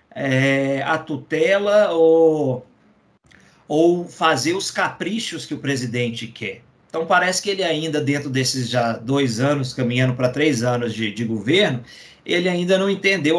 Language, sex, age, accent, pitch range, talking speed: Portuguese, male, 50-69, Brazilian, 130-195 Hz, 150 wpm